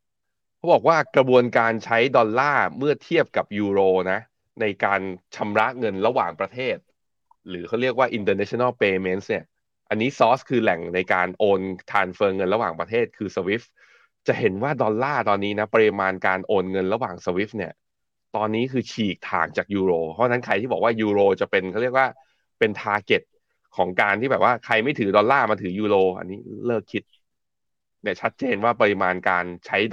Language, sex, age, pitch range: Thai, male, 20-39, 95-120 Hz